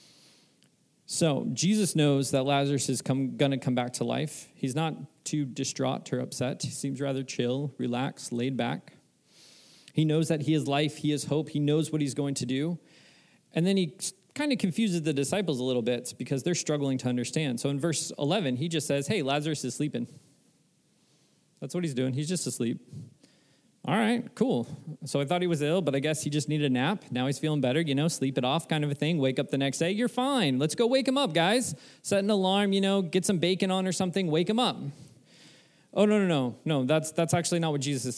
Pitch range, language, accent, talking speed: 135-175 Hz, English, American, 230 wpm